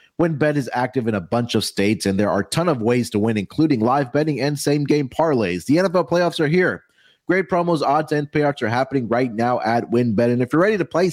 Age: 30-49